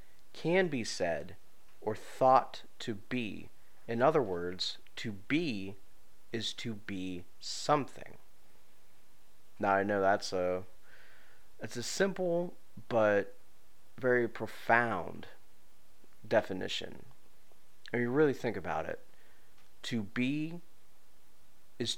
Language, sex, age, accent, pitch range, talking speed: English, male, 30-49, American, 95-125 Hz, 100 wpm